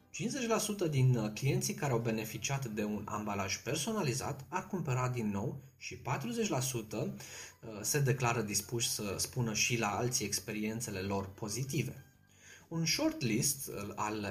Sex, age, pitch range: male, 20-39, 105-135 Hz